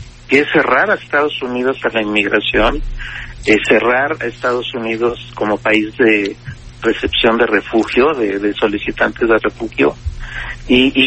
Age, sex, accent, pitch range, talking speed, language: 50-69, male, Mexican, 115-135 Hz, 140 wpm, Spanish